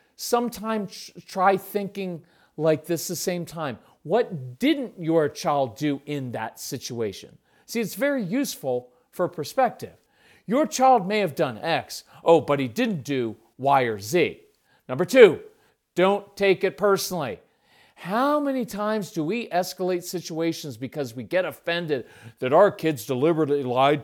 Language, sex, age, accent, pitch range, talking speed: English, male, 40-59, American, 155-235 Hz, 145 wpm